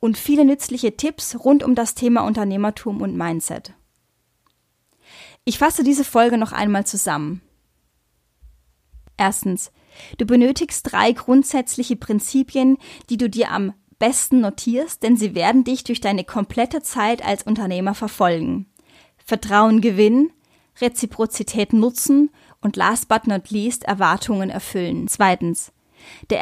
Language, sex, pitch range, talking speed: German, female, 205-255 Hz, 125 wpm